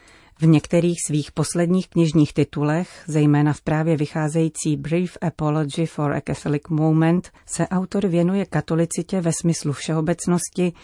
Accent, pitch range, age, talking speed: native, 150-175 Hz, 40-59, 125 wpm